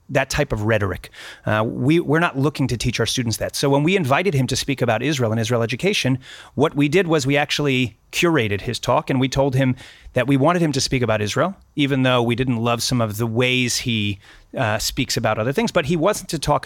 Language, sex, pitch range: English, male, 120-155 Hz